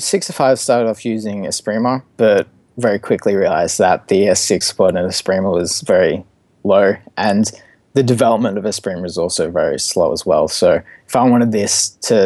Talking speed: 175 wpm